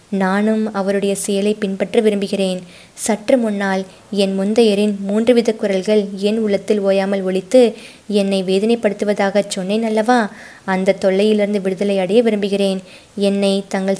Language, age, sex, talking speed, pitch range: Tamil, 20-39, female, 110 wpm, 190-215 Hz